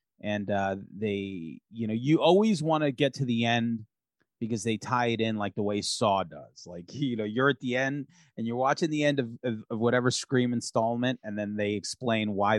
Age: 30-49